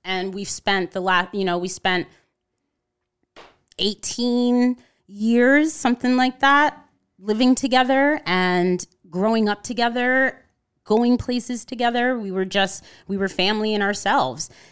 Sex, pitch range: female, 165-210 Hz